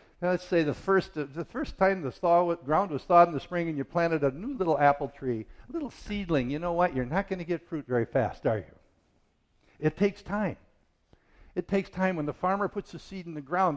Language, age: English, 60-79